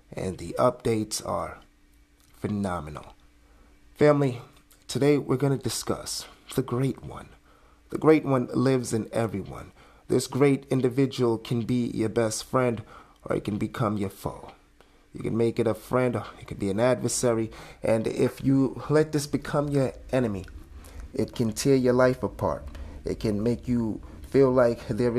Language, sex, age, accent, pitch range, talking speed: English, male, 30-49, American, 100-130 Hz, 160 wpm